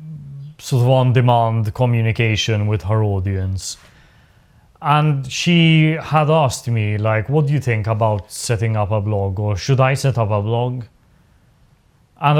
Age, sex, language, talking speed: 30-49, male, English, 145 wpm